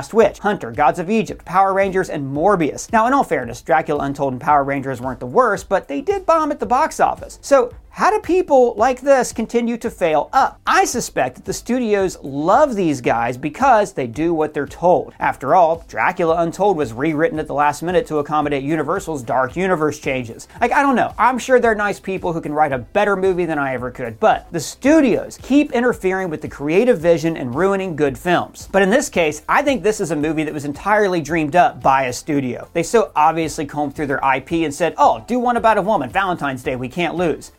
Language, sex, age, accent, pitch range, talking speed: English, male, 40-59, American, 145-210 Hz, 220 wpm